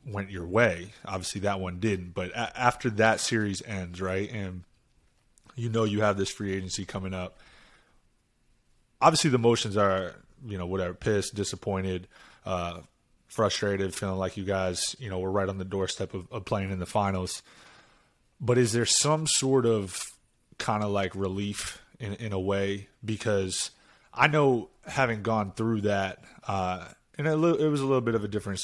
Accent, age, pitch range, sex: American, 20-39, 95-110 Hz, male